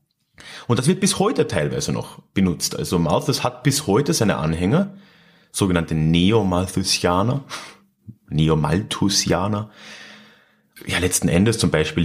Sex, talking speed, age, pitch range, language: male, 115 wpm, 30-49, 90-135 Hz, German